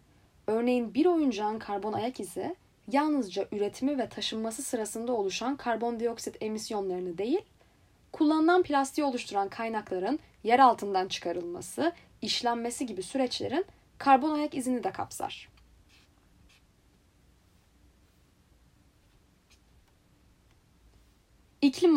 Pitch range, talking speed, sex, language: 195-280 Hz, 85 wpm, female, Turkish